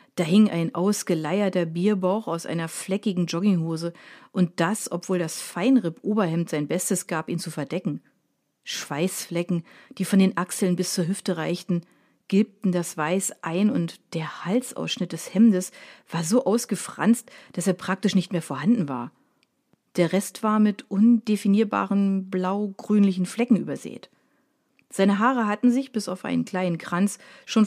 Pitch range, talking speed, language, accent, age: 175-215 Hz, 145 wpm, German, German, 40-59